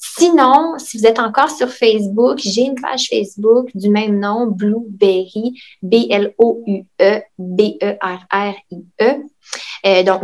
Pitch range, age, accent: 195-235 Hz, 20-39, Canadian